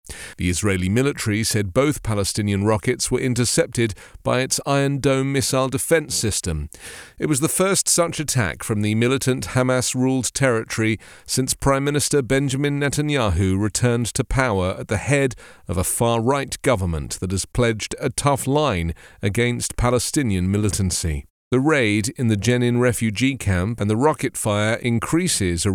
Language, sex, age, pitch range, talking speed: English, male, 40-59, 105-135 Hz, 150 wpm